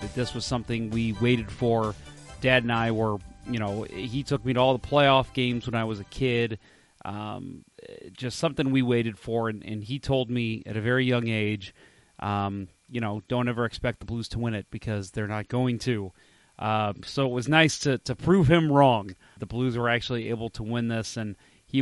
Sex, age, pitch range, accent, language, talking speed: male, 30-49, 110-125 Hz, American, English, 215 wpm